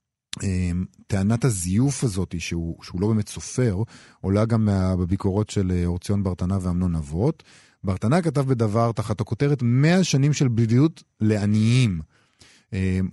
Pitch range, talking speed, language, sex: 100-145 Hz, 130 wpm, Hebrew, male